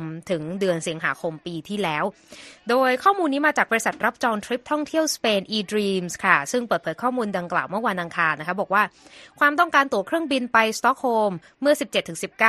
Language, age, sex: Thai, 20-39, female